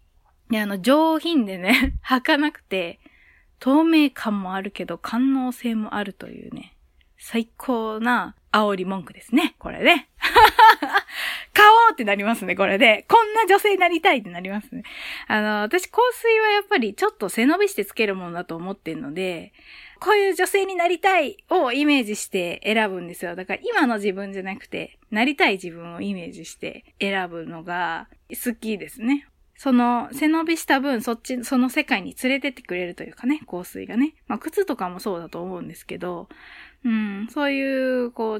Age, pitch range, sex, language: 20-39, 195-320 Hz, female, Japanese